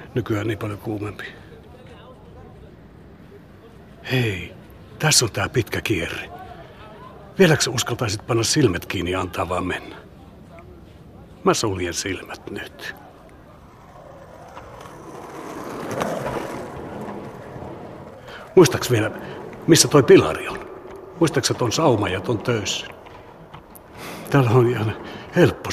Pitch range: 110-140 Hz